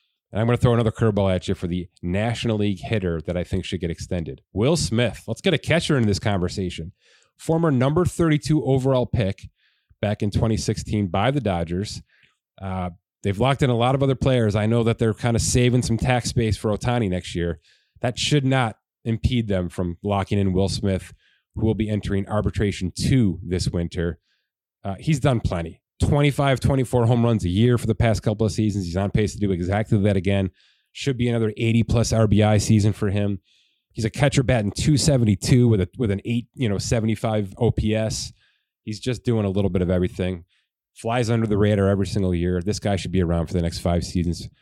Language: English